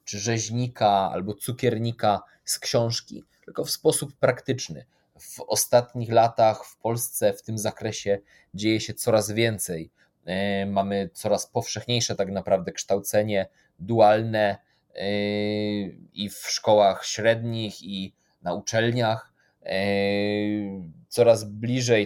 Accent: native